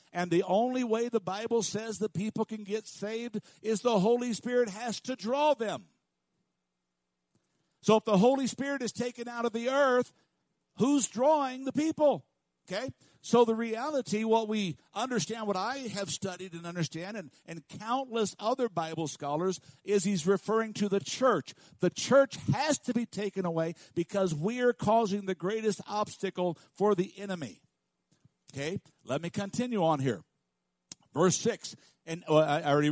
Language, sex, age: English, male, 60-79